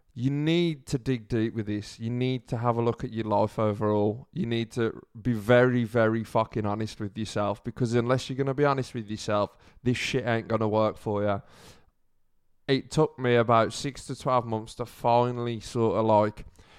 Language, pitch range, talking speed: English, 110-125 Hz, 205 wpm